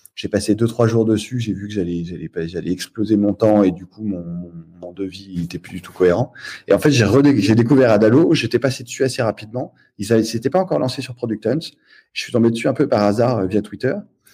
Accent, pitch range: French, 95-115 Hz